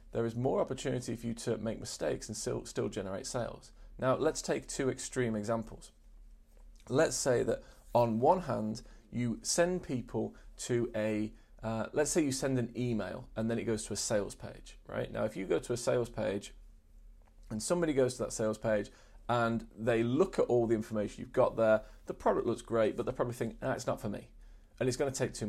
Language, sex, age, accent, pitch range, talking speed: English, male, 40-59, British, 105-130 Hz, 215 wpm